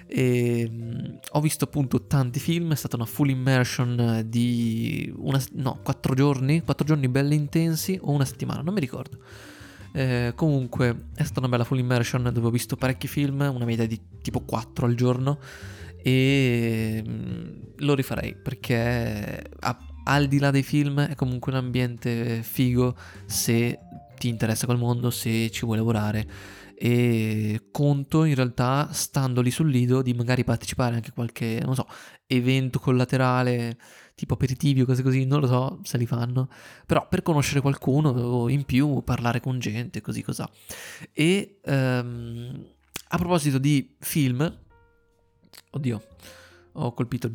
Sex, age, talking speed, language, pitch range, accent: male, 20-39, 150 wpm, Italian, 120-145 Hz, native